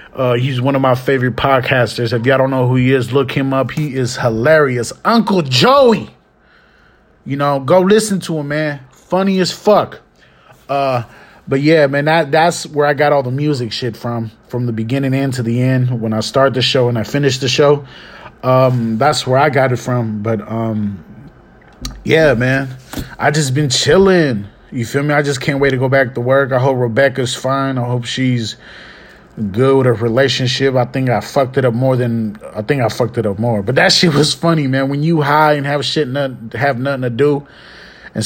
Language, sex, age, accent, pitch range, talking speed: English, male, 30-49, American, 120-145 Hz, 210 wpm